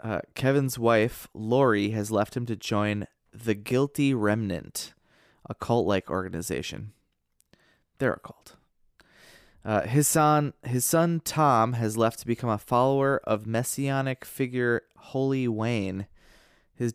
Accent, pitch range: American, 105-125 Hz